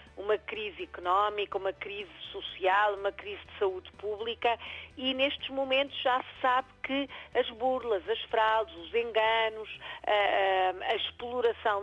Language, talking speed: Portuguese, 130 wpm